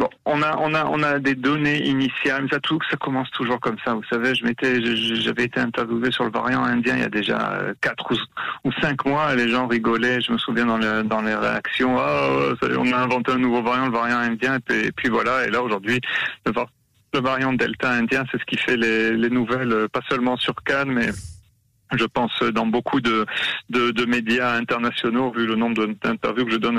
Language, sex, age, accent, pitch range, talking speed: French, male, 40-59, French, 115-135 Hz, 215 wpm